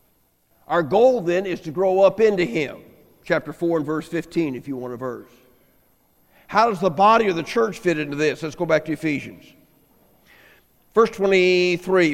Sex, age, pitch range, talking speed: male, 50-69, 155-195 Hz, 180 wpm